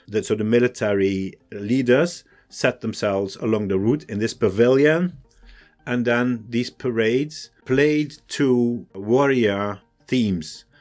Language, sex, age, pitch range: English, male, 50-69, 95-130 Hz